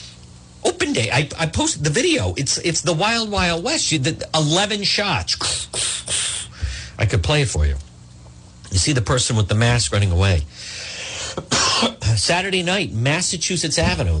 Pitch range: 95-140 Hz